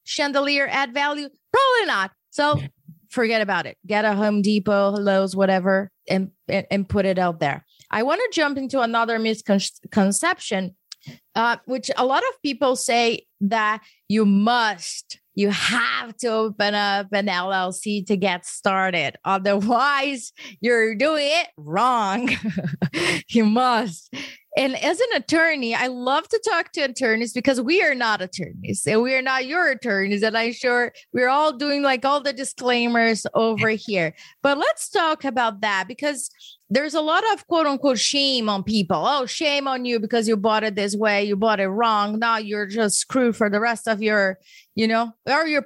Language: English